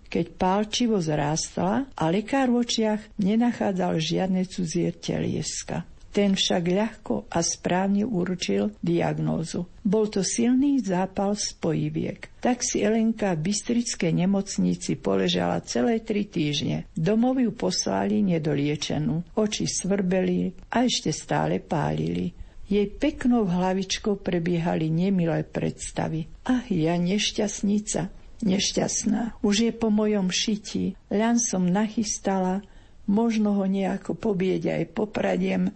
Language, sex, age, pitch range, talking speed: Slovak, female, 50-69, 175-225 Hz, 110 wpm